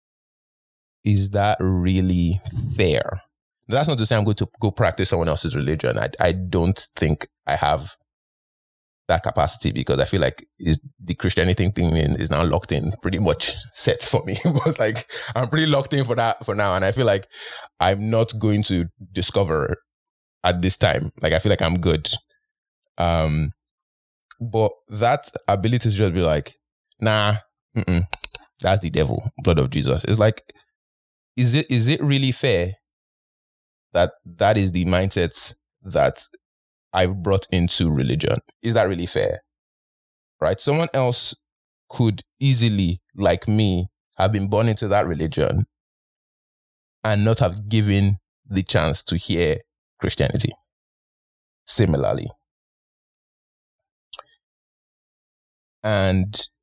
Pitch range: 85-115 Hz